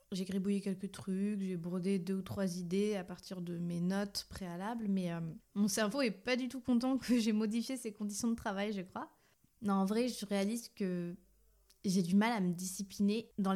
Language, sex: French, female